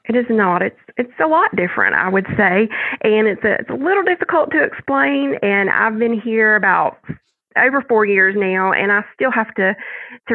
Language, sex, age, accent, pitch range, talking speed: English, female, 30-49, American, 190-220 Hz, 205 wpm